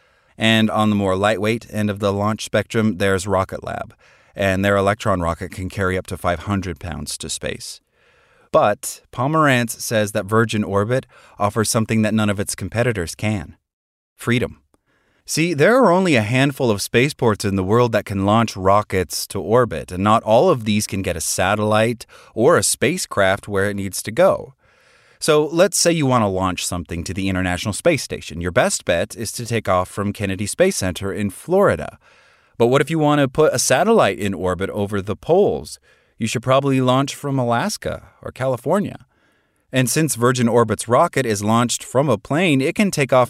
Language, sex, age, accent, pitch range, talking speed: English, male, 30-49, American, 95-125 Hz, 190 wpm